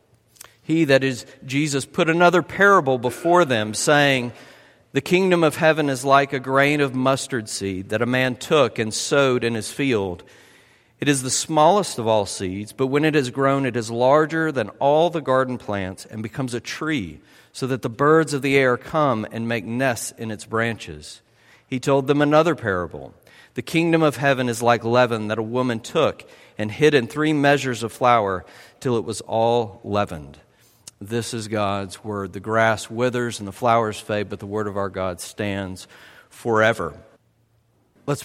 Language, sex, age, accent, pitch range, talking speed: English, male, 50-69, American, 110-135 Hz, 180 wpm